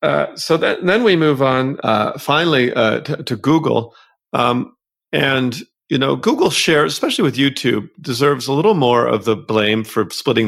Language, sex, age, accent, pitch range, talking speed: English, male, 40-59, American, 115-150 Hz, 165 wpm